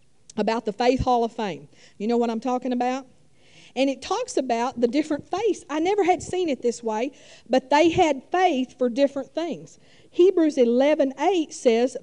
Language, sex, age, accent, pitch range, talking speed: English, female, 50-69, American, 240-320 Hz, 185 wpm